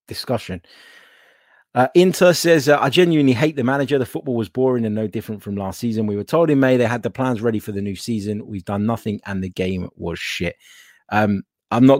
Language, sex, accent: English, male, British